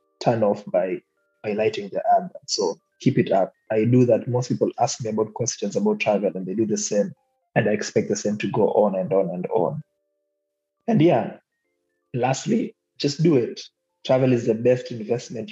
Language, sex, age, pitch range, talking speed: Swahili, male, 20-39, 105-130 Hz, 190 wpm